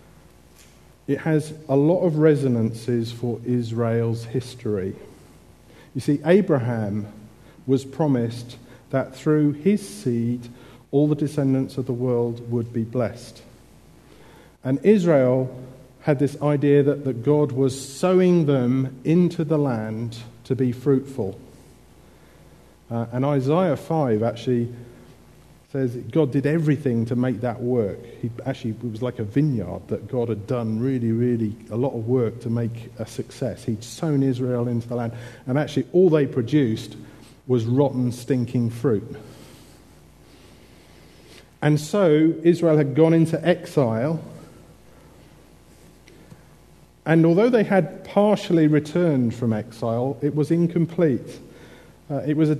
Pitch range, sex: 120-150 Hz, male